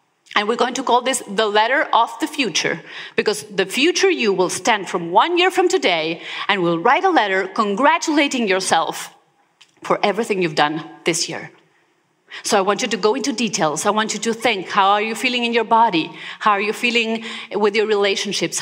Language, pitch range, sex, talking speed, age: English, 195-285 Hz, female, 200 wpm, 30-49